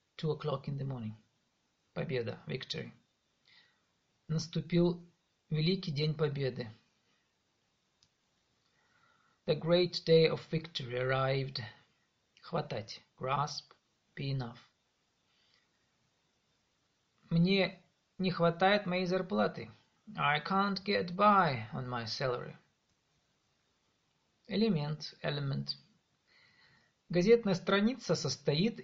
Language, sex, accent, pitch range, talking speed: Russian, male, native, 135-190 Hz, 80 wpm